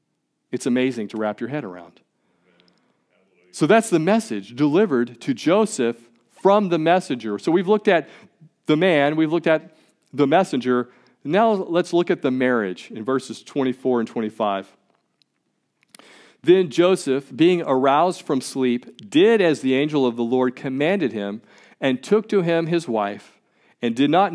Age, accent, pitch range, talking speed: 40-59, American, 120-170 Hz, 155 wpm